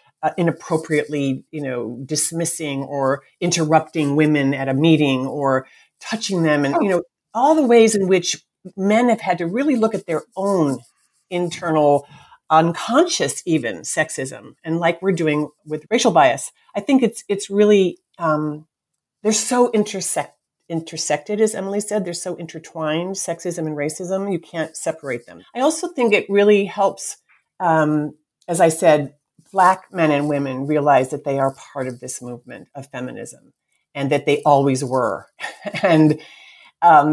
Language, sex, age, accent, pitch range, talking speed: English, female, 50-69, American, 145-185 Hz, 155 wpm